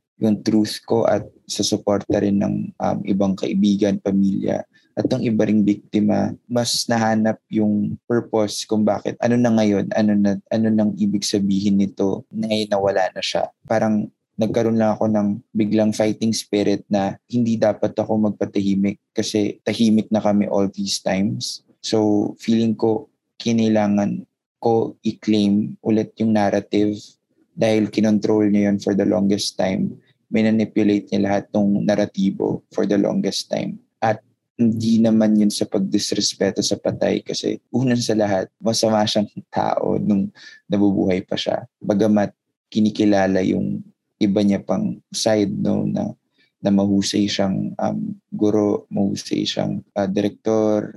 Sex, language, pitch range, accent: male, Filipino, 100-110 Hz, native